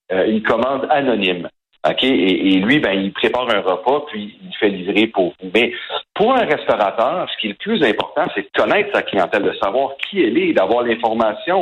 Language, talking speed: French, 205 wpm